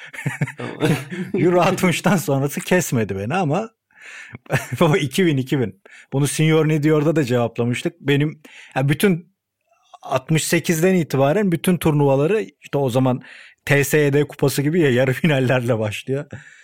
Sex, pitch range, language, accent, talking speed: male, 125-160 Hz, Turkish, native, 110 wpm